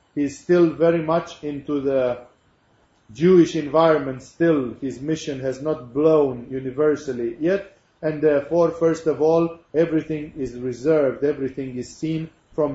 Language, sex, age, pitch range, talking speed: English, male, 40-59, 130-165 Hz, 130 wpm